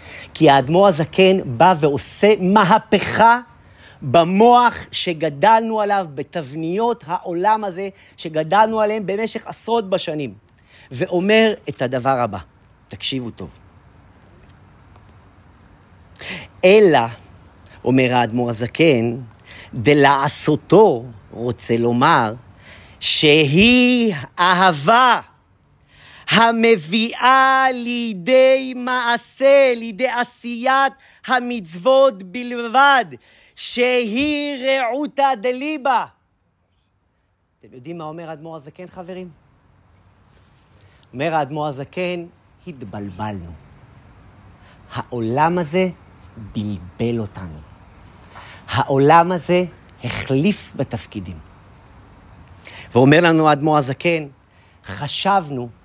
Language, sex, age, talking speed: Hebrew, male, 40-59, 70 wpm